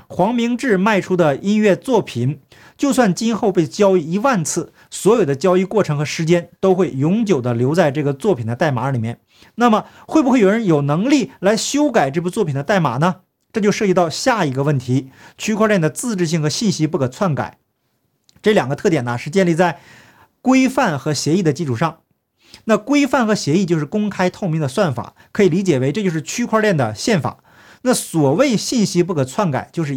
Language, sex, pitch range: Chinese, male, 145-210 Hz